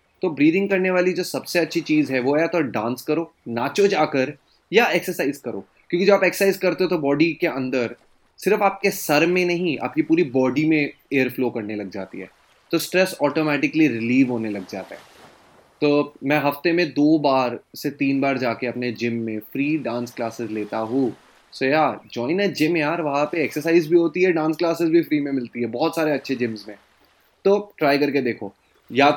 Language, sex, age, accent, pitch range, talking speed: Hindi, male, 20-39, native, 120-165 Hz, 205 wpm